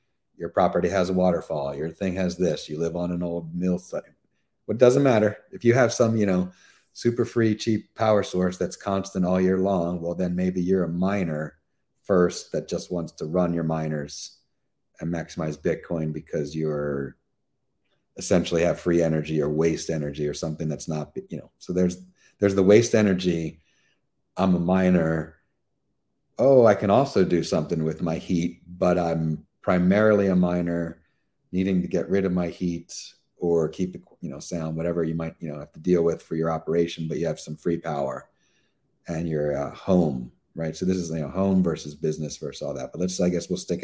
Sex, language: male, English